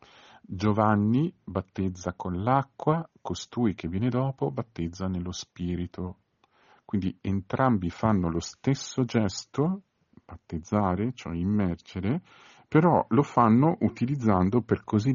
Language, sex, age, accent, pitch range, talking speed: Italian, male, 50-69, native, 90-115 Hz, 105 wpm